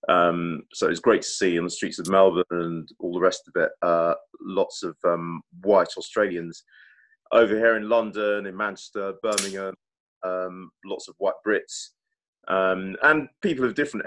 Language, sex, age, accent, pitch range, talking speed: English, male, 30-49, British, 90-110 Hz, 170 wpm